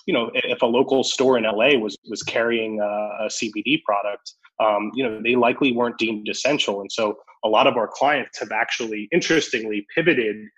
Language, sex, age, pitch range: English, male, 20-39, 110-165 Hz